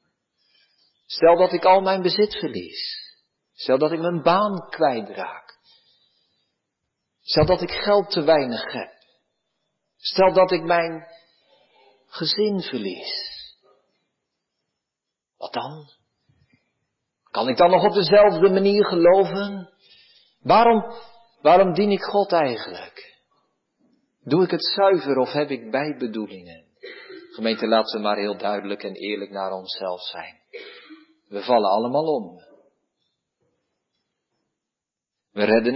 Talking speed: 110 wpm